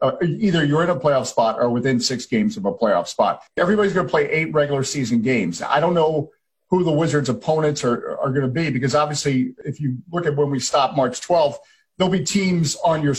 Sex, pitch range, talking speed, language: male, 135-180 Hz, 225 wpm, English